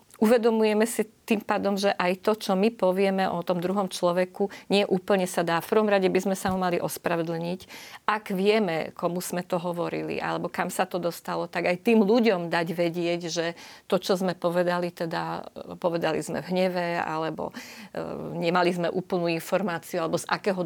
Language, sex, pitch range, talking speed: Slovak, female, 165-195 Hz, 175 wpm